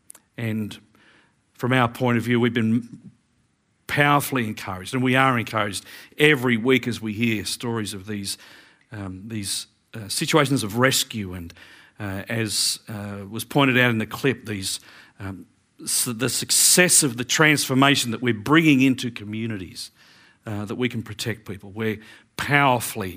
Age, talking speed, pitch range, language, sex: 50-69, 155 wpm, 110-135 Hz, English, male